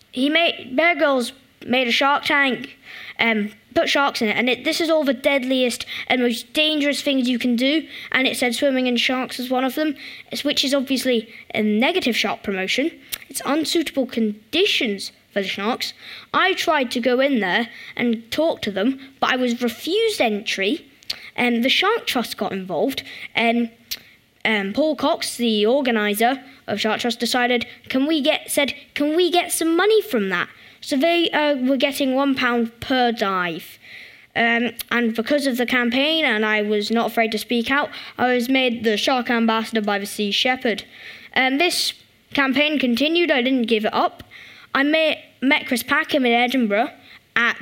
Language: English